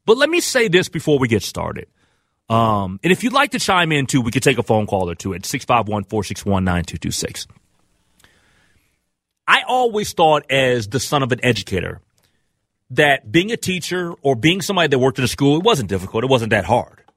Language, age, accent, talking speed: English, 30-49, American, 195 wpm